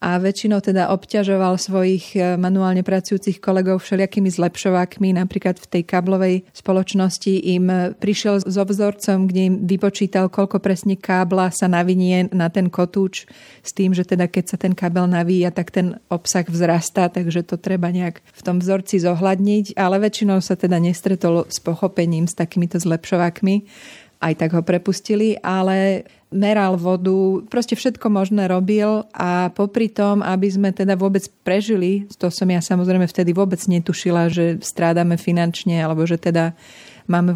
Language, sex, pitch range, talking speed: Slovak, female, 180-195 Hz, 155 wpm